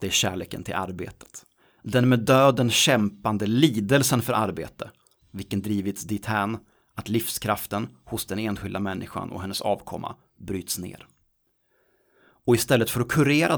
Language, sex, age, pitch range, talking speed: Swedish, male, 30-49, 100-125 Hz, 135 wpm